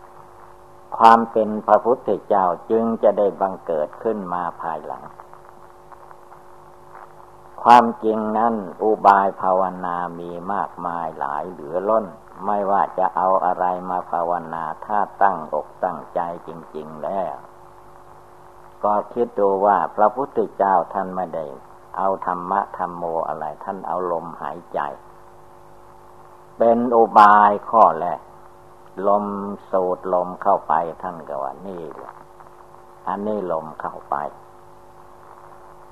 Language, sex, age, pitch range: Thai, male, 60-79, 90-110 Hz